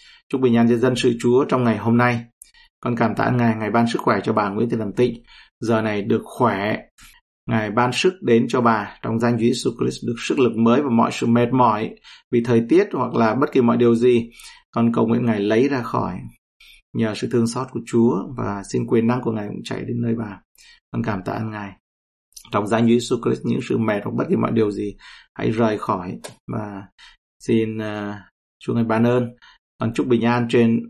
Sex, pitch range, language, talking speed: male, 110-120 Hz, Vietnamese, 225 wpm